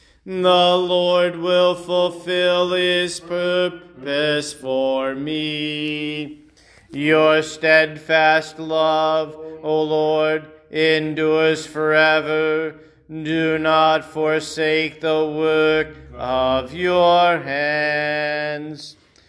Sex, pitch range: male, 145-175 Hz